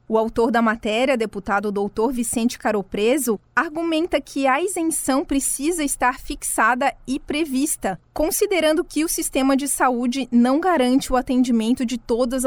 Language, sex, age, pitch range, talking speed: Portuguese, female, 20-39, 235-280 Hz, 140 wpm